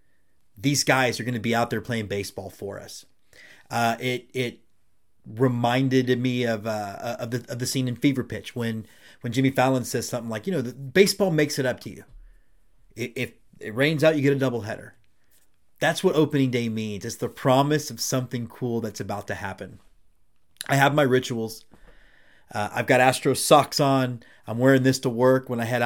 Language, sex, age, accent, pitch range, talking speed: English, male, 30-49, American, 115-130 Hz, 195 wpm